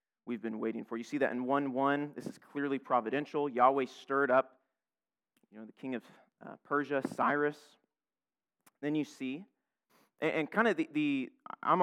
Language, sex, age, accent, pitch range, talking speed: English, male, 30-49, American, 125-145 Hz, 170 wpm